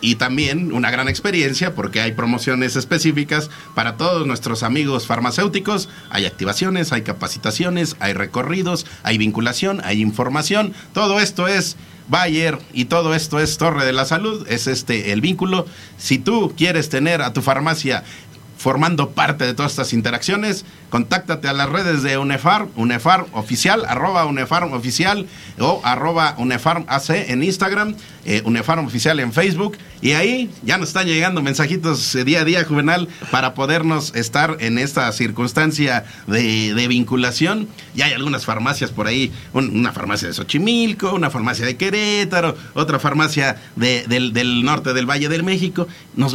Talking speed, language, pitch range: 155 wpm, Spanish, 120-170 Hz